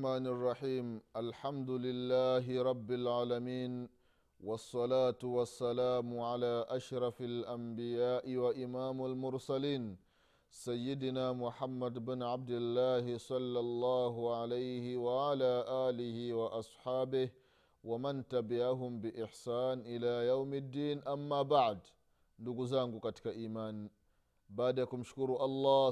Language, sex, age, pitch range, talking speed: Swahili, male, 30-49, 115-130 Hz, 95 wpm